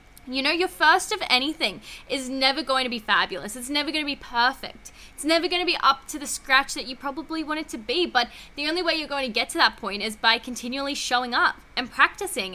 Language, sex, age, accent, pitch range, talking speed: English, female, 10-29, Australian, 235-325 Hz, 250 wpm